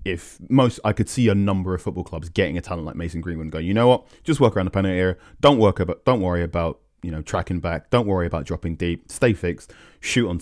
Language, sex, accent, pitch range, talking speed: English, male, British, 85-100 Hz, 265 wpm